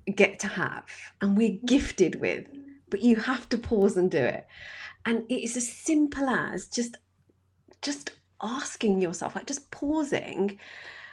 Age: 40-59